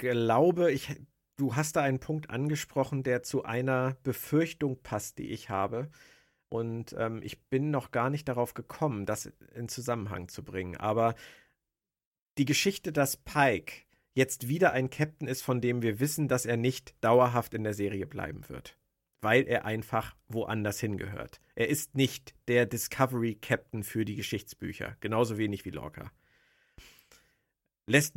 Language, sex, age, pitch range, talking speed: German, male, 50-69, 110-140 Hz, 150 wpm